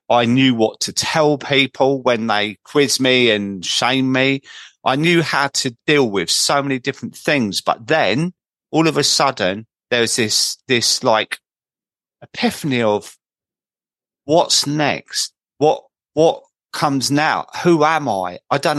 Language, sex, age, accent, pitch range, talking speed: English, male, 40-59, British, 110-140 Hz, 150 wpm